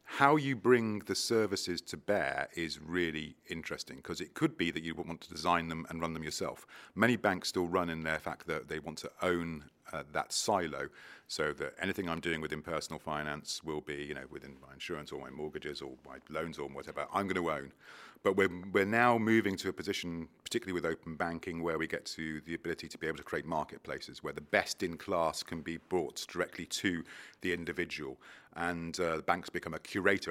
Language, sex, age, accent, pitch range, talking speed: English, male, 40-59, British, 80-100 Hz, 220 wpm